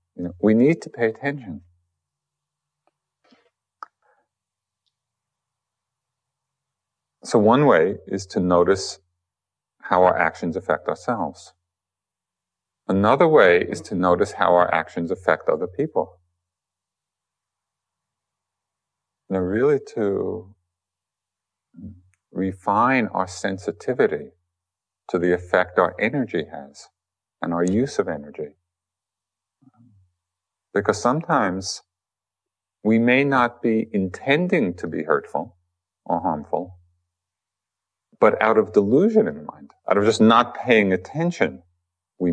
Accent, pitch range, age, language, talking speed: American, 90-115 Hz, 50-69, English, 100 wpm